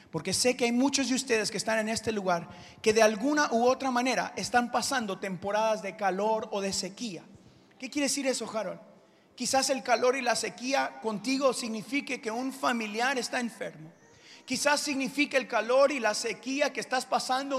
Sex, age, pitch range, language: male, 30-49, 230-285 Hz, Spanish